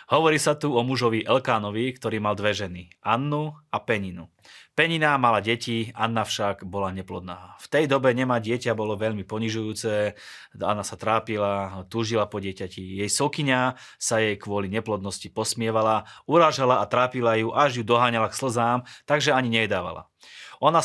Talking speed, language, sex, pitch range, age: 155 wpm, Slovak, male, 100-120 Hz, 20-39